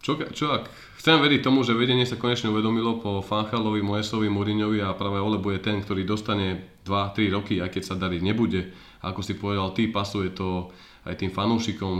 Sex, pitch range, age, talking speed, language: male, 95-105 Hz, 20-39, 190 wpm, Slovak